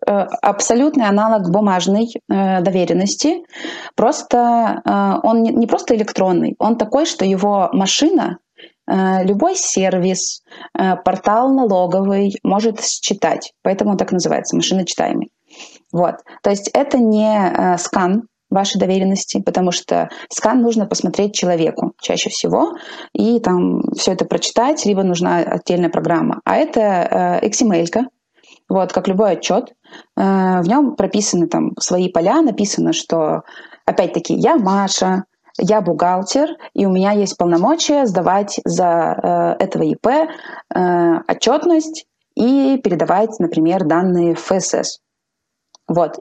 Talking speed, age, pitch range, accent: 115 wpm, 20-39, 180-245 Hz, native